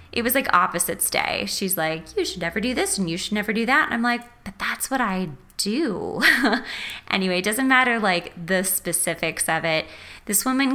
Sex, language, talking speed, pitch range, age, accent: female, English, 205 wpm, 185-260 Hz, 20-39, American